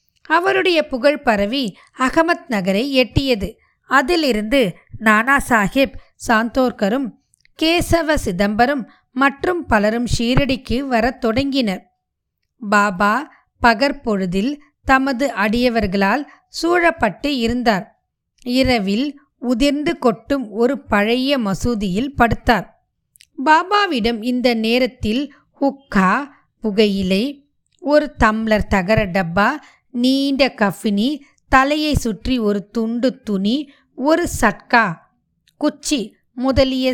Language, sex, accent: Tamil, female, native